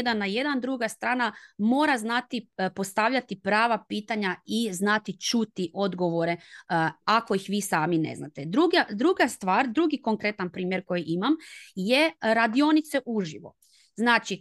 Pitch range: 185-250 Hz